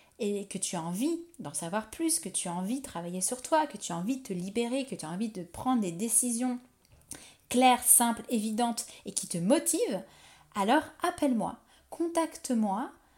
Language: French